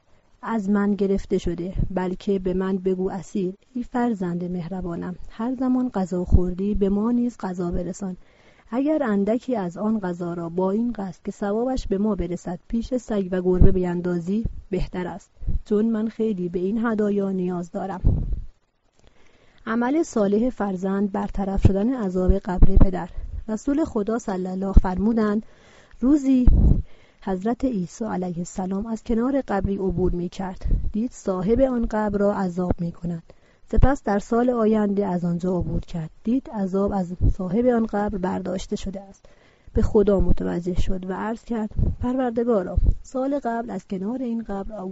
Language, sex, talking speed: Persian, female, 150 wpm